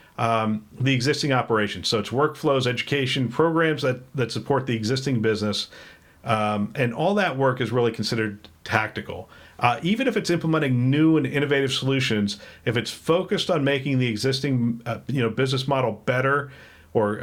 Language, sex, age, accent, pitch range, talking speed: English, male, 50-69, American, 110-140 Hz, 165 wpm